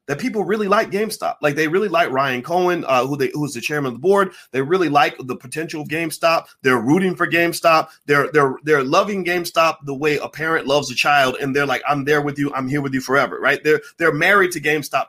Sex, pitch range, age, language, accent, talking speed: male, 130-170 Hz, 30-49, English, American, 245 wpm